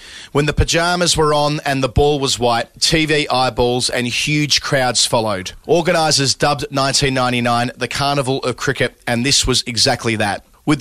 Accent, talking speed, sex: Australian, 160 wpm, male